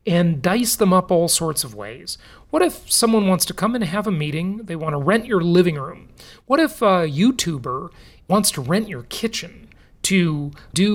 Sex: male